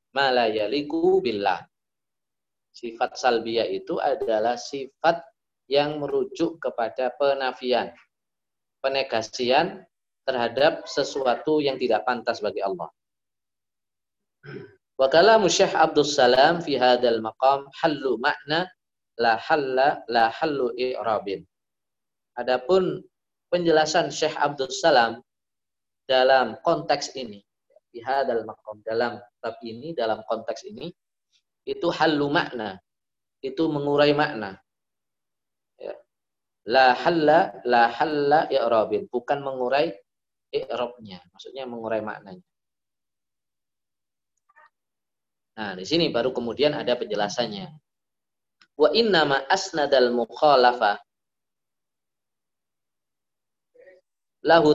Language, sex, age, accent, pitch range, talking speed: Indonesian, male, 20-39, native, 115-160 Hz, 85 wpm